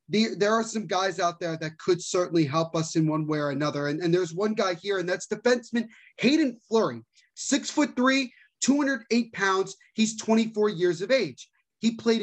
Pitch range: 185-230 Hz